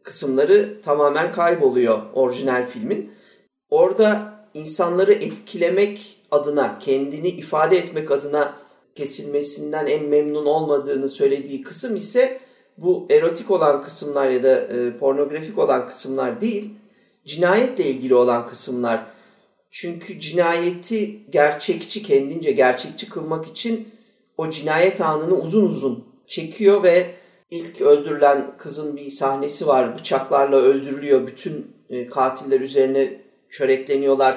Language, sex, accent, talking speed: Turkish, male, native, 105 wpm